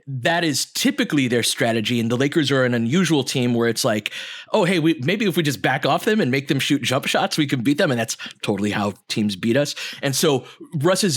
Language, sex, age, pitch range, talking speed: English, male, 30-49, 115-150 Hz, 235 wpm